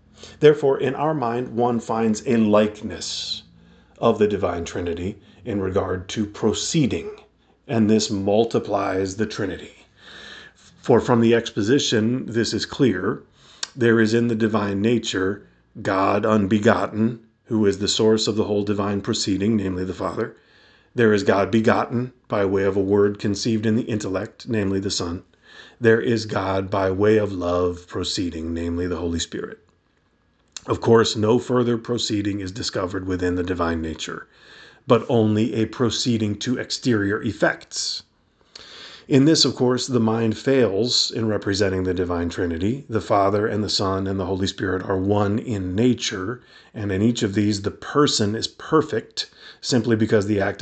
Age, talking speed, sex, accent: 40-59, 155 wpm, male, American